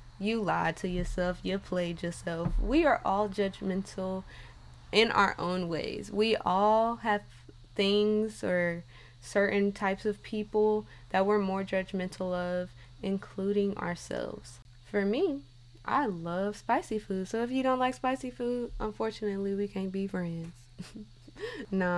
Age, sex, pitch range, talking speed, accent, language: 20-39, female, 175-205 Hz, 135 wpm, American, English